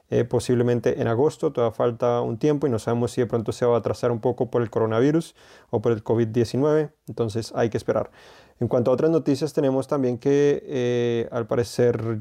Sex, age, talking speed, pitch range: male, 30-49, 205 wpm, 115-130 Hz